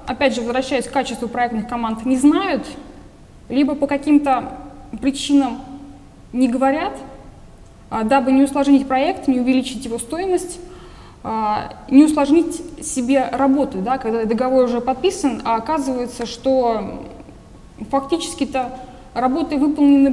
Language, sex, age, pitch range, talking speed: Russian, female, 20-39, 245-285 Hz, 110 wpm